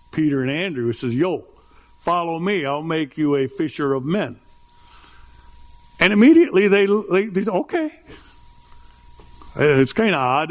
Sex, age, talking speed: male, 60-79, 145 wpm